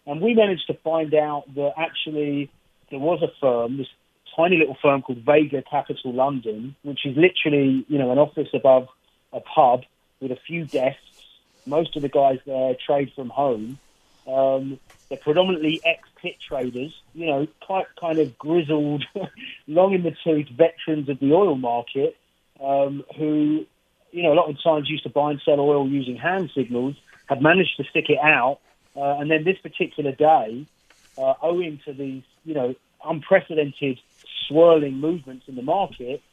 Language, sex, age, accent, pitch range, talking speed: English, male, 40-59, British, 135-155 Hz, 165 wpm